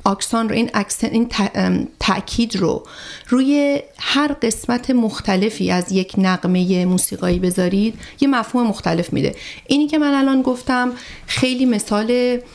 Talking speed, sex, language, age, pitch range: 135 wpm, female, Persian, 30-49, 185-245 Hz